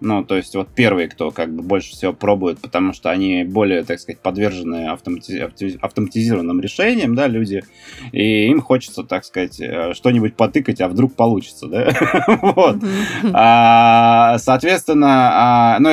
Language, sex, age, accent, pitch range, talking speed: Russian, male, 20-39, native, 105-135 Hz, 135 wpm